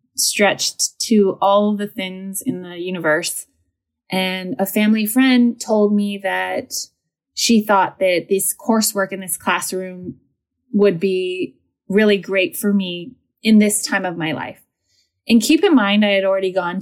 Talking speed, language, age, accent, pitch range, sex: 155 wpm, English, 20-39, American, 185-235 Hz, female